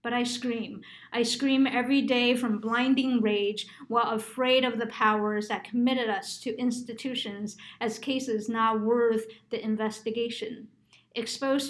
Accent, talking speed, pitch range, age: American, 140 wpm, 210-235 Hz, 50-69